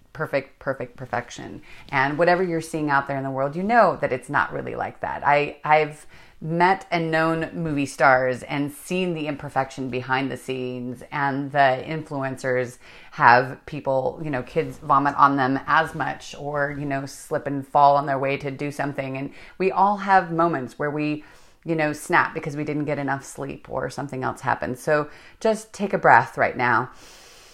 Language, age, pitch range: English, 30-49, 135-165 Hz